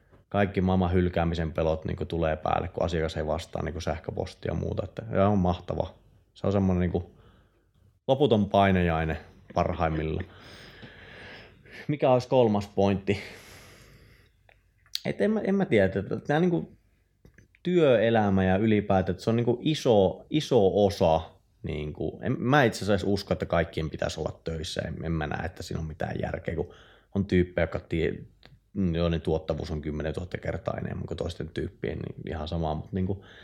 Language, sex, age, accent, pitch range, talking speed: Finnish, male, 30-49, native, 85-105 Hz, 165 wpm